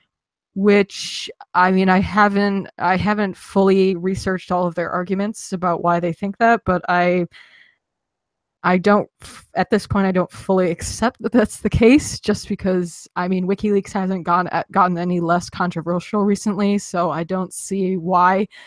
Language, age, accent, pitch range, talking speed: English, 20-39, American, 180-205 Hz, 160 wpm